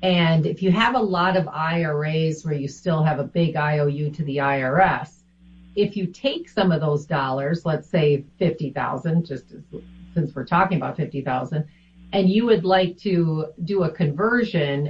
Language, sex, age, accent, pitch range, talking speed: English, female, 40-59, American, 150-190 Hz, 175 wpm